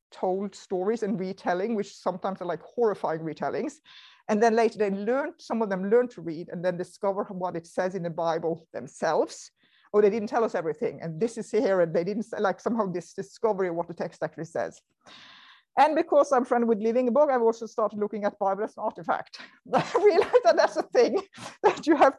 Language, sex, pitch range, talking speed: English, female, 195-250 Hz, 225 wpm